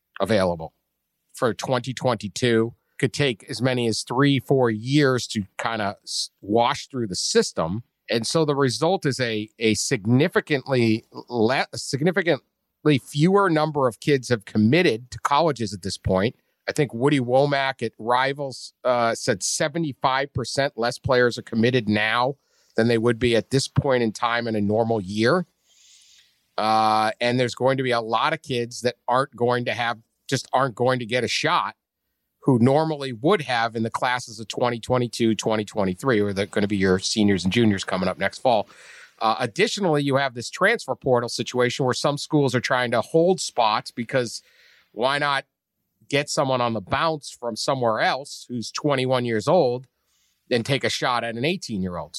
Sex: male